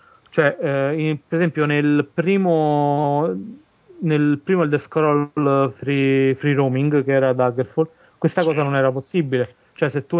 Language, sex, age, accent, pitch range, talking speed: Italian, male, 30-49, native, 135-155 Hz, 140 wpm